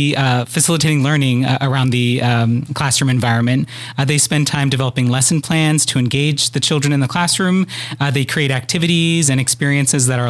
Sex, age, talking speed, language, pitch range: male, 30-49, 180 wpm, English, 130-150 Hz